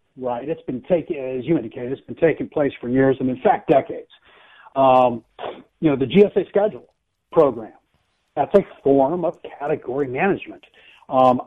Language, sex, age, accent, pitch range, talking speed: English, male, 60-79, American, 130-165 Hz, 160 wpm